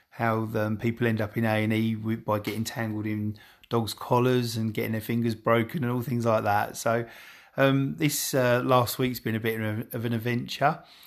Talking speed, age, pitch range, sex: 190 wpm, 30-49, 110-135 Hz, male